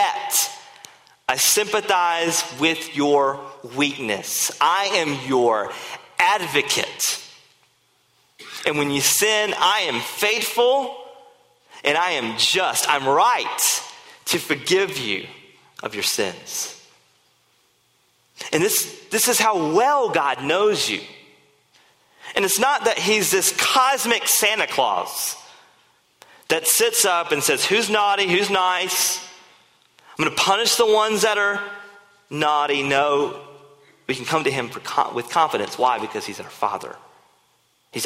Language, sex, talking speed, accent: English, male, 125 wpm, American